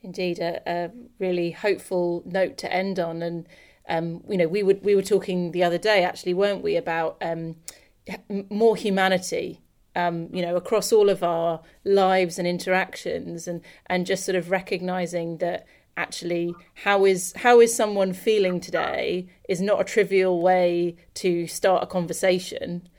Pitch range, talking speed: 175-195 Hz, 160 wpm